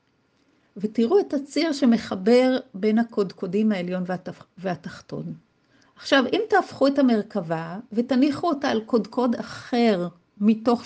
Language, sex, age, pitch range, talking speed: Hebrew, female, 50-69, 200-260 Hz, 110 wpm